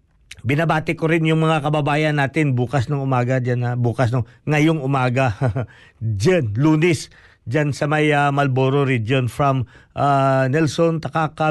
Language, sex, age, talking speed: Filipino, male, 50-69, 145 wpm